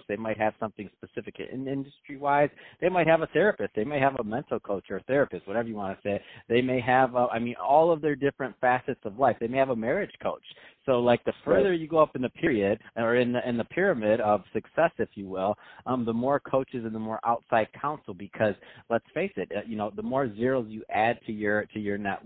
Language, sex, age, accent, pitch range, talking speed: English, male, 40-59, American, 110-135 Hz, 245 wpm